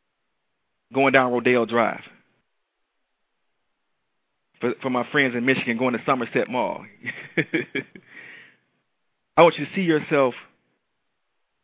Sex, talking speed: male, 105 wpm